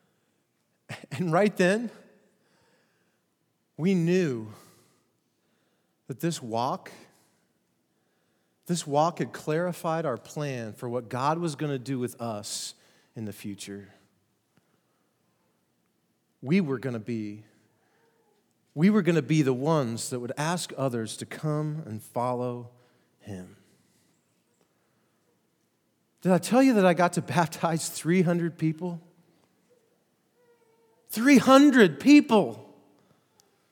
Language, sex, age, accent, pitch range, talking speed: English, male, 40-59, American, 125-195 Hz, 105 wpm